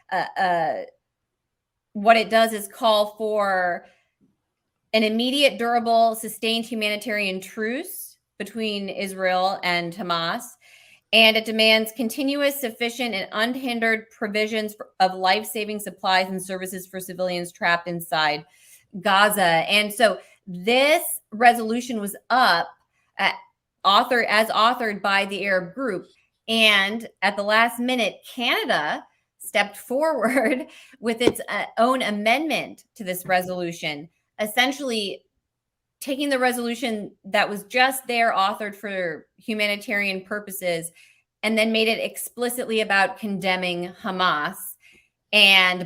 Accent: American